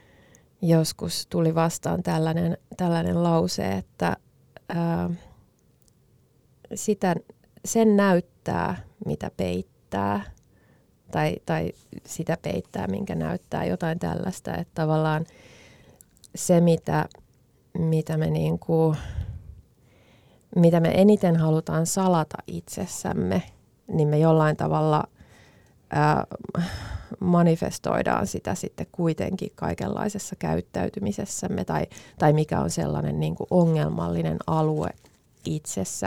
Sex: female